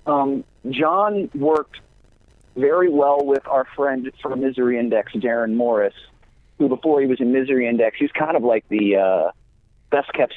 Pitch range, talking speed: 115-145 Hz, 160 wpm